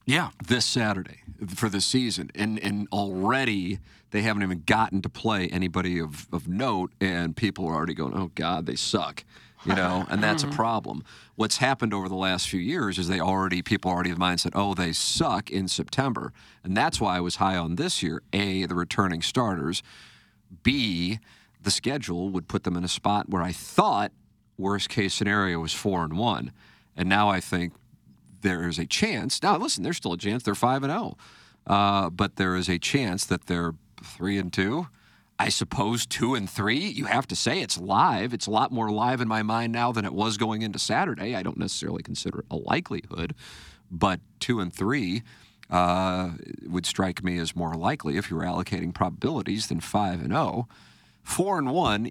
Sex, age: male, 50-69